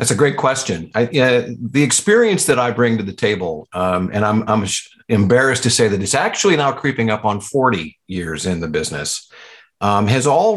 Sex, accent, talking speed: male, American, 205 wpm